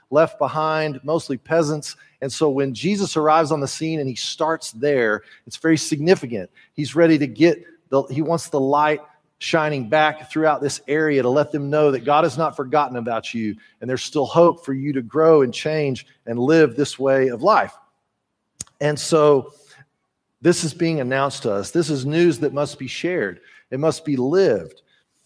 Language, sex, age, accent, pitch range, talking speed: English, male, 40-59, American, 130-160 Hz, 190 wpm